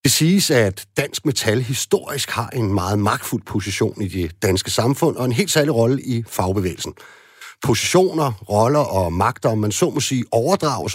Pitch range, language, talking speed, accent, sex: 110-145 Hz, Danish, 175 wpm, native, male